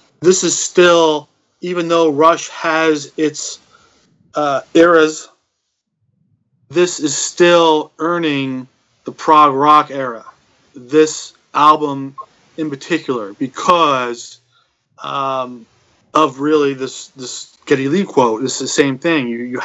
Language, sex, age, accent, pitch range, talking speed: English, male, 30-49, American, 135-160 Hz, 115 wpm